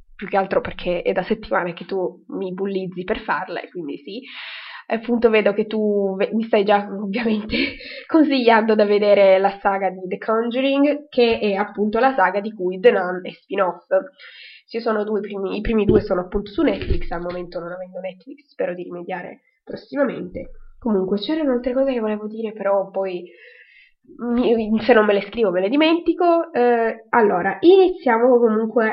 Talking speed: 175 wpm